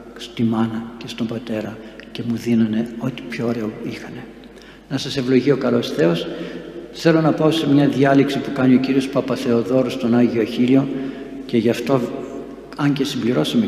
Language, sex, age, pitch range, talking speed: Greek, male, 60-79, 120-140 Hz, 165 wpm